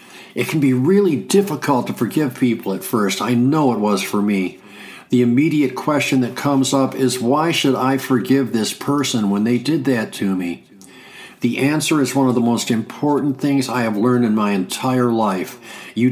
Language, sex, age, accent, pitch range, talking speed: English, male, 50-69, American, 115-140 Hz, 195 wpm